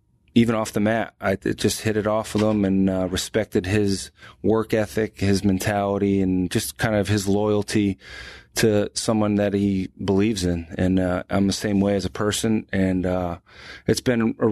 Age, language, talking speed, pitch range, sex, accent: 30-49, English, 190 wpm, 95-110 Hz, male, American